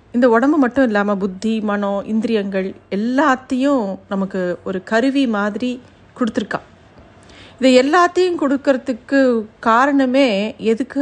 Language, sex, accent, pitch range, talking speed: Tamil, female, native, 210-270 Hz, 100 wpm